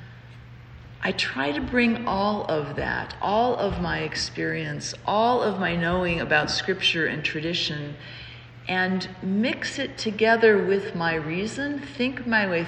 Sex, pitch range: female, 140-215 Hz